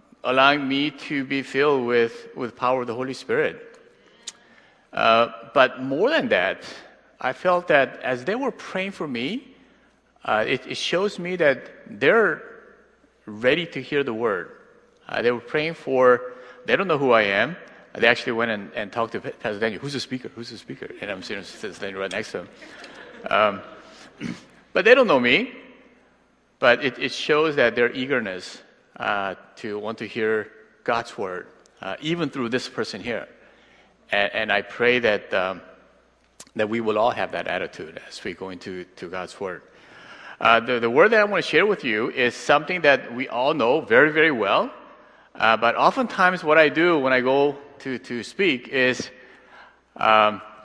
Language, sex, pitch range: Korean, male, 120-180 Hz